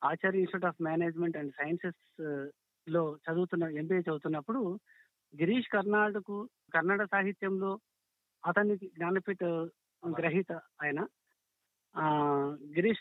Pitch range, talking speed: 155-190 Hz, 90 wpm